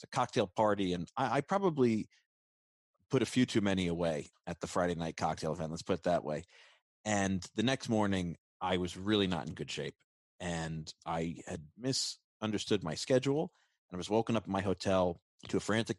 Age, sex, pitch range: 30-49, male, 85-110 Hz